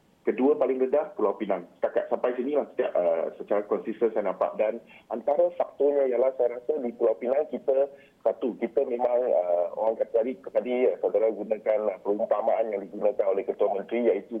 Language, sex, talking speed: Malay, male, 185 wpm